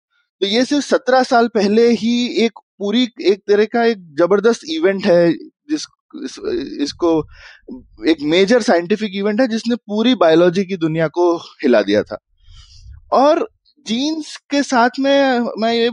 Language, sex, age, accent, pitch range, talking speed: Hindi, male, 20-39, native, 200-255 Hz, 150 wpm